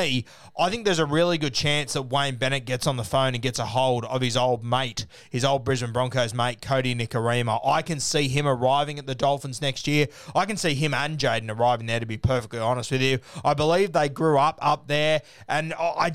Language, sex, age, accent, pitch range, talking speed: English, male, 20-39, Australian, 130-165 Hz, 230 wpm